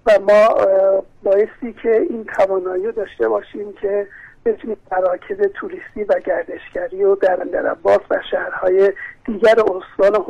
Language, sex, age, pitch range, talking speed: Persian, male, 50-69, 200-265 Hz, 120 wpm